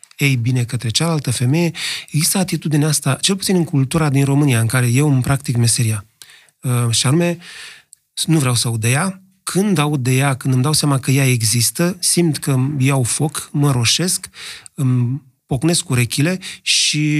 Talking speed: 180 wpm